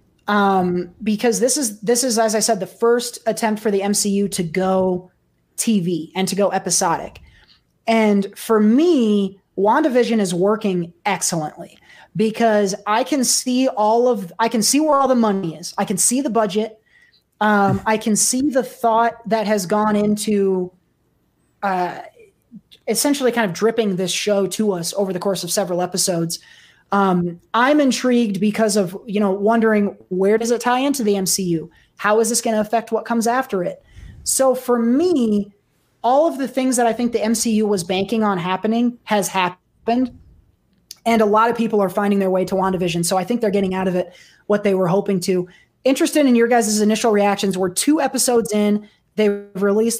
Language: English